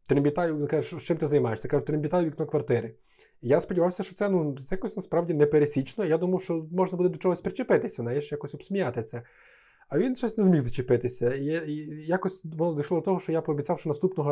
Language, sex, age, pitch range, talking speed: Ukrainian, male, 20-39, 130-170 Hz, 200 wpm